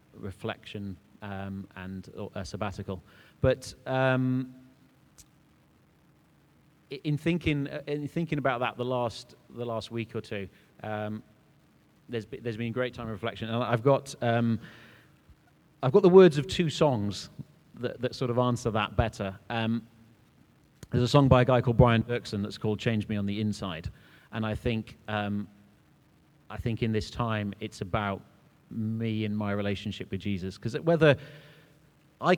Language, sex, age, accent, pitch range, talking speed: English, male, 30-49, British, 100-130 Hz, 160 wpm